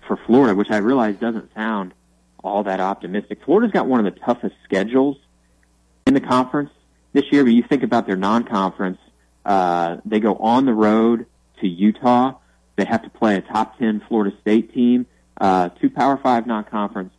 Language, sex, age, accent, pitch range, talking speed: English, male, 30-49, American, 90-115 Hz, 180 wpm